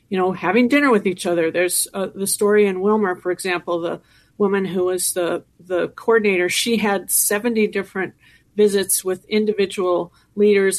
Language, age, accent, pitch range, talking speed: English, 50-69, American, 175-200 Hz, 165 wpm